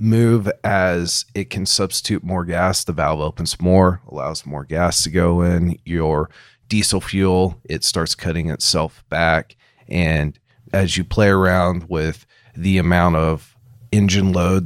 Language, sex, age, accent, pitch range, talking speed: English, male, 30-49, American, 80-95 Hz, 145 wpm